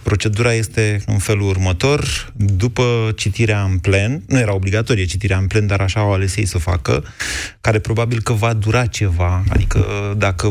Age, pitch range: 30-49, 95-110 Hz